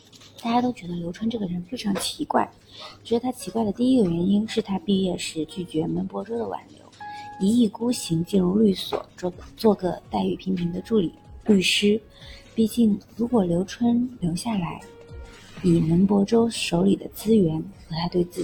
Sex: female